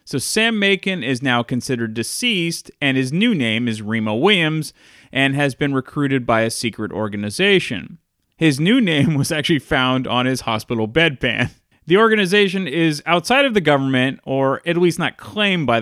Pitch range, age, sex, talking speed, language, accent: 120-180 Hz, 30-49, male, 170 wpm, English, American